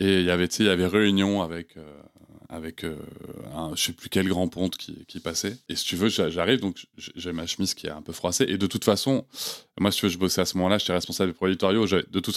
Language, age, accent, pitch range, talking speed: French, 20-39, French, 95-125 Hz, 260 wpm